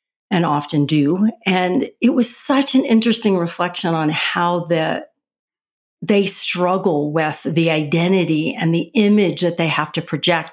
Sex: female